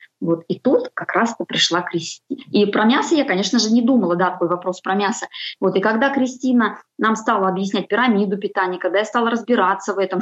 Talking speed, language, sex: 205 wpm, Russian, female